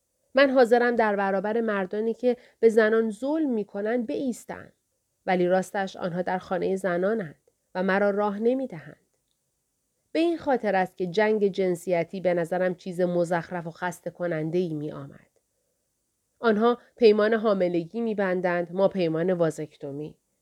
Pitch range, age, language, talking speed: 175-235 Hz, 30-49, Persian, 135 wpm